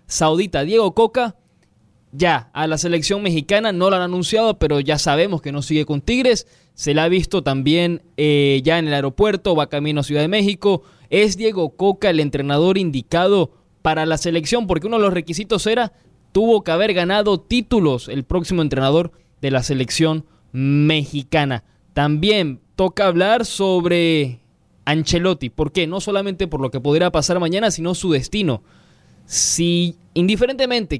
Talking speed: 160 wpm